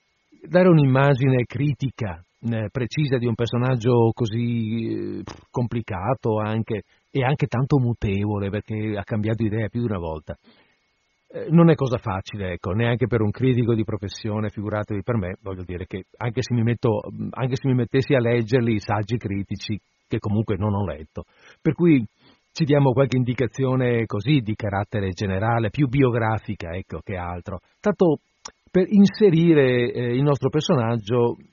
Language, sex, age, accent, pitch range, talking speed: Italian, male, 50-69, native, 105-135 Hz, 150 wpm